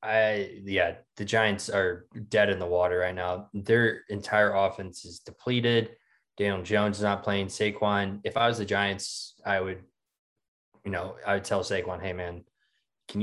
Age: 20-39